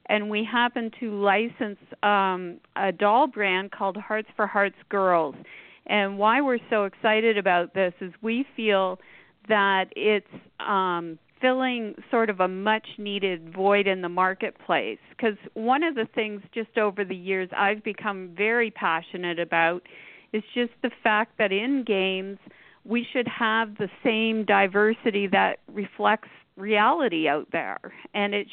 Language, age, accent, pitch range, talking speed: English, 50-69, American, 185-220 Hz, 145 wpm